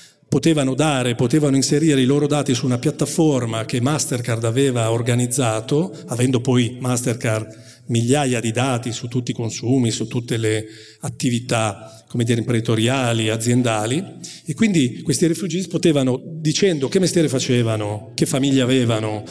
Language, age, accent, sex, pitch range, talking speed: Italian, 40-59, native, male, 120-150 Hz, 135 wpm